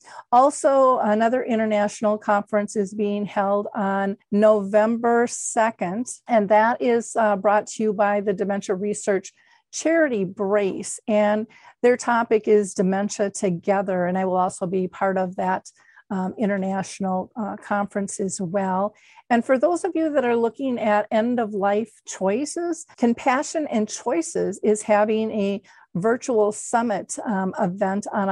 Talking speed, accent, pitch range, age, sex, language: 140 wpm, American, 200-235 Hz, 50-69, female, English